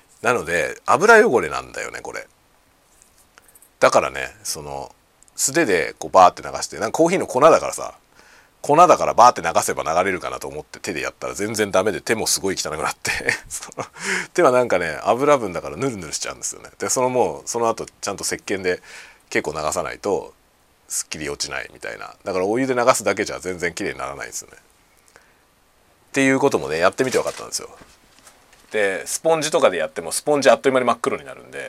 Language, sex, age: Japanese, male, 40-59